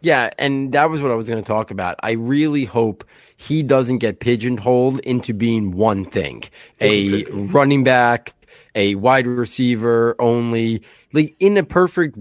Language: English